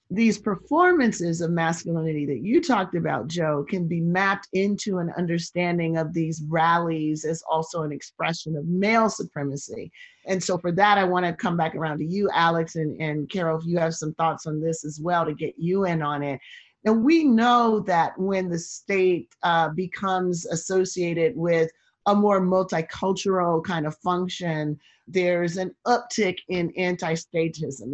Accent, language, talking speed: American, English, 170 wpm